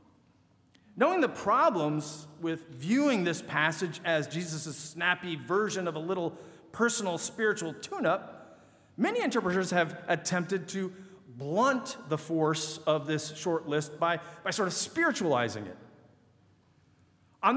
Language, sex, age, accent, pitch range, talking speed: English, male, 40-59, American, 145-210 Hz, 125 wpm